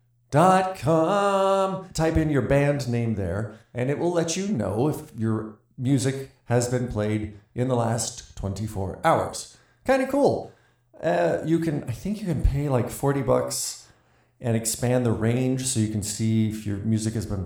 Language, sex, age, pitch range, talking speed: English, male, 40-59, 110-140 Hz, 180 wpm